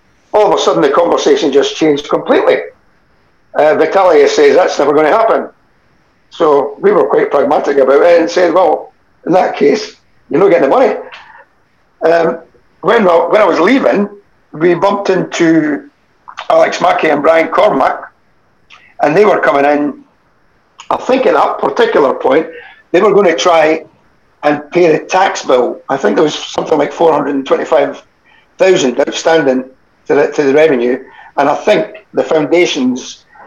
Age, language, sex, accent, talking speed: 60-79, English, male, British, 160 wpm